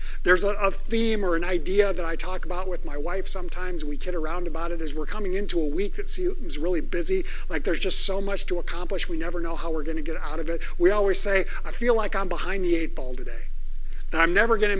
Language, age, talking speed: English, 50-69, 260 wpm